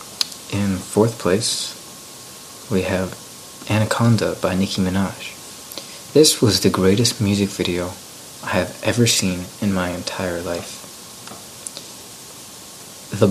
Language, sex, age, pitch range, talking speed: English, male, 30-49, 95-115 Hz, 110 wpm